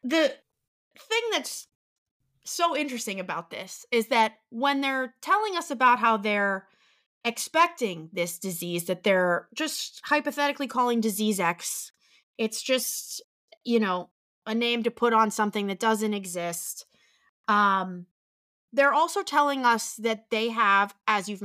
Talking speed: 135 wpm